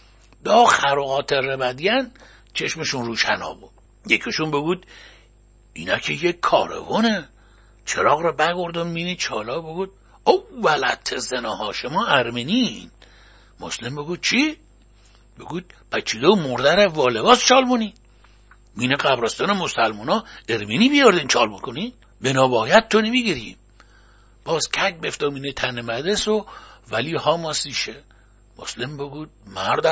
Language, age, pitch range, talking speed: Persian, 60-79, 115-180 Hz, 110 wpm